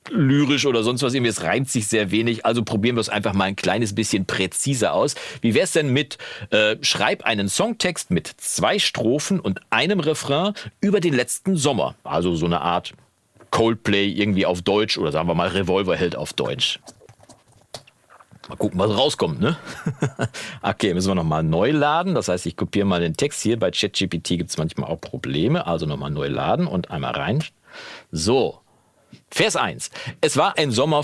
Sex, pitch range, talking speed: male, 100-150 Hz, 190 wpm